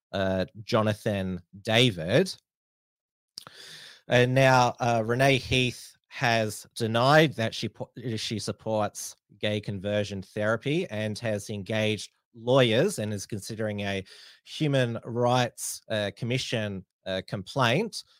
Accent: Australian